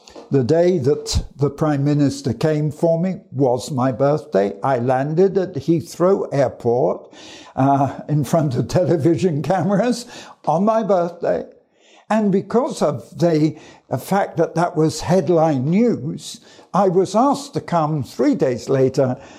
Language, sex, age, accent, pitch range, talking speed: English, male, 60-79, British, 145-215 Hz, 135 wpm